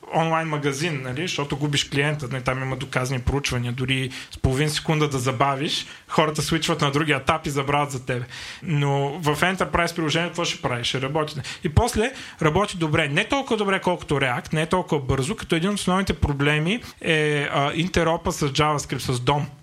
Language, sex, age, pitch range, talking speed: Bulgarian, male, 30-49, 135-170 Hz, 175 wpm